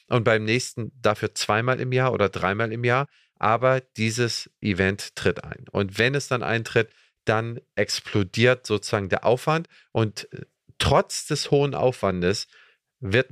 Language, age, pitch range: German, 40-59, 100-120 Hz